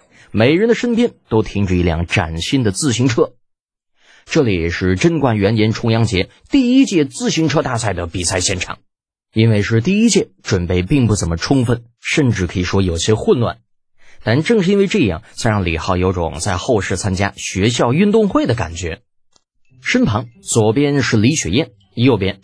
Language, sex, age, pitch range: Chinese, male, 20-39, 95-155 Hz